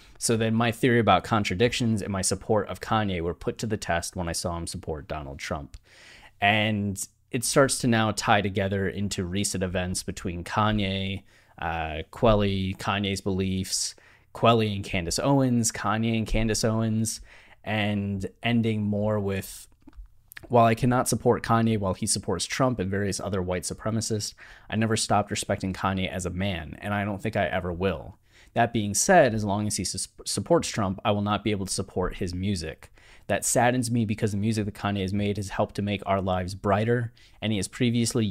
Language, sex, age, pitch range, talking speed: English, male, 20-39, 95-110 Hz, 185 wpm